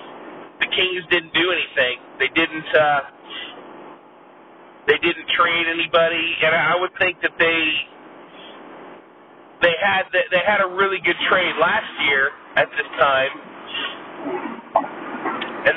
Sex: male